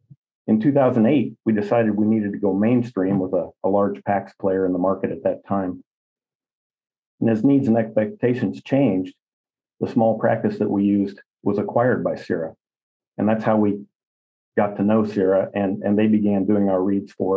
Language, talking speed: English, 185 wpm